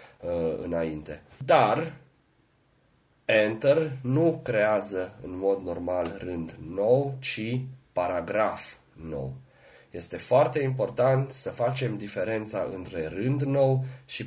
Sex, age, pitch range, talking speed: male, 30-49, 90-130 Hz, 95 wpm